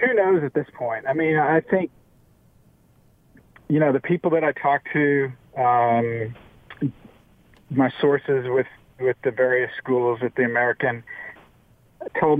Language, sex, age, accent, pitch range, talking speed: English, male, 50-69, American, 125-150 Hz, 140 wpm